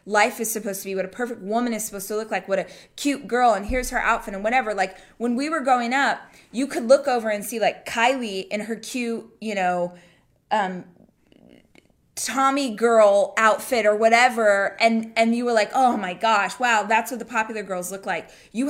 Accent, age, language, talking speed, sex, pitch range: American, 20-39, English, 210 wpm, female, 215-265 Hz